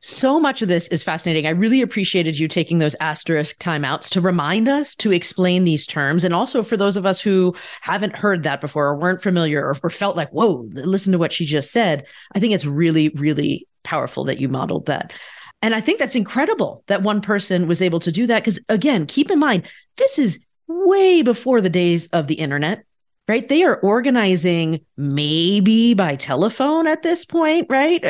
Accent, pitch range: American, 160-220 Hz